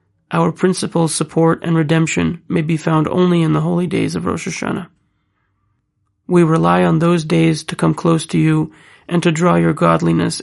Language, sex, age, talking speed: English, male, 30-49, 180 wpm